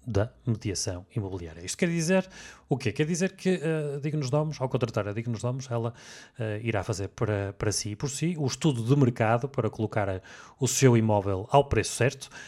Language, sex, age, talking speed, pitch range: Portuguese, male, 30-49, 200 wpm, 105-135 Hz